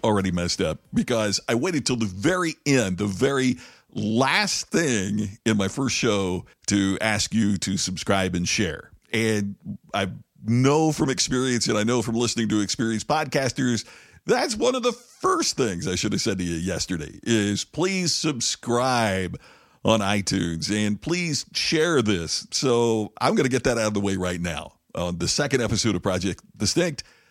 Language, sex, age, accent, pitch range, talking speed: English, male, 50-69, American, 95-125 Hz, 170 wpm